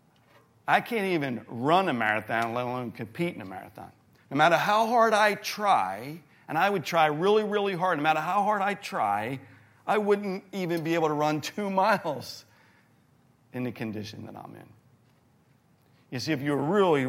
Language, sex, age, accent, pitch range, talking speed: English, male, 50-69, American, 115-165 Hz, 180 wpm